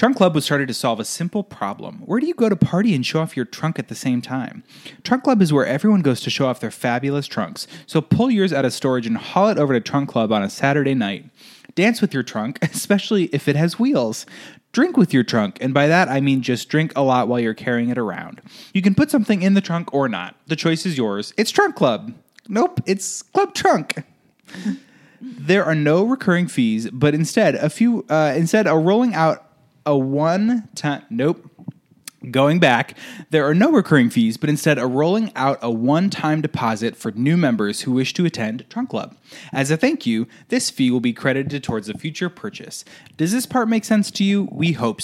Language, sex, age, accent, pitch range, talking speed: English, male, 20-39, American, 130-200 Hz, 220 wpm